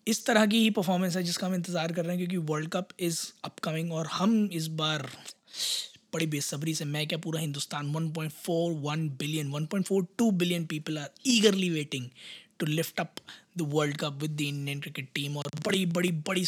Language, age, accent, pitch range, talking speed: Hindi, 20-39, native, 160-200 Hz, 185 wpm